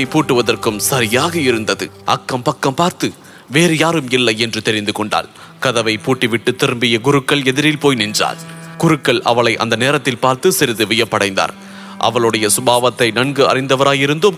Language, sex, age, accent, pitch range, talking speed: English, male, 30-49, Indian, 125-185 Hz, 125 wpm